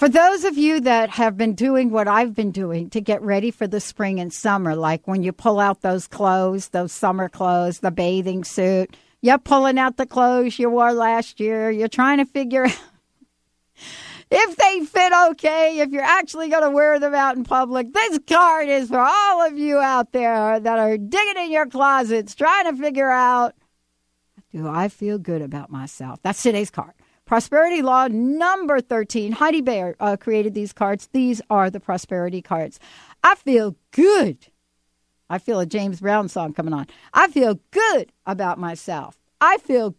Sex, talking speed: female, 180 wpm